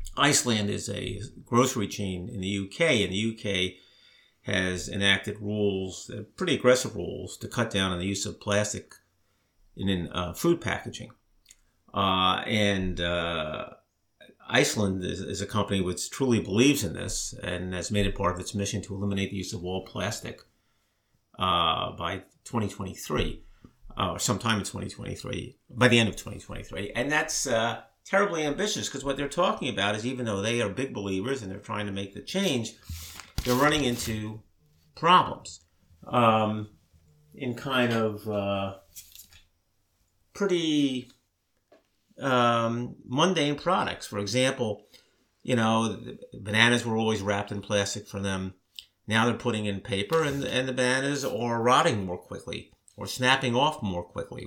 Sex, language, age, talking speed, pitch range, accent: male, English, 50-69, 150 wpm, 95-120 Hz, American